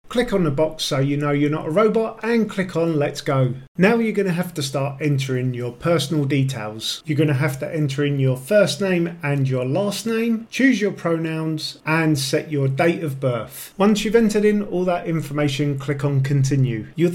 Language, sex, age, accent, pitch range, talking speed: English, male, 40-59, British, 140-195 Hz, 215 wpm